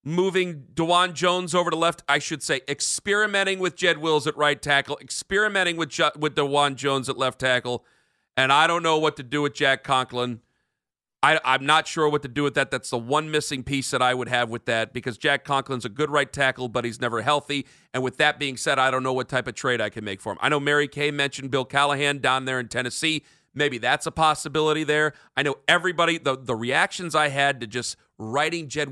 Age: 40-59